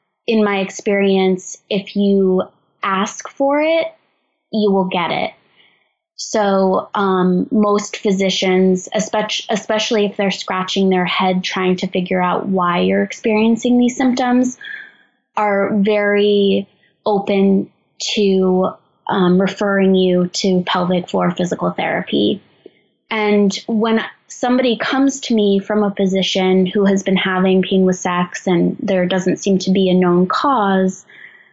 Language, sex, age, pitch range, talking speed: English, female, 20-39, 190-220 Hz, 130 wpm